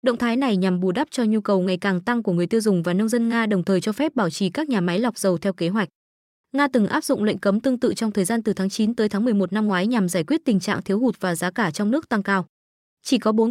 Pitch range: 195-245 Hz